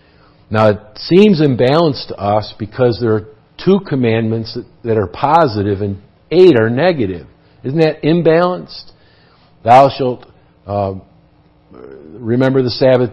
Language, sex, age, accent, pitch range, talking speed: English, male, 50-69, American, 100-135 Hz, 130 wpm